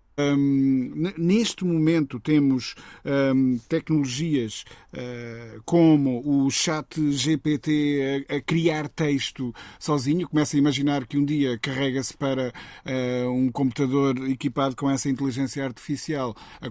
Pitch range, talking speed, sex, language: 130-160 Hz, 105 wpm, male, Portuguese